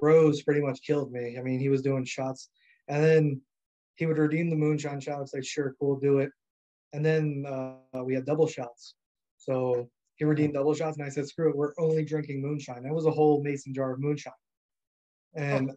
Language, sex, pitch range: English, male, 130-150 Hz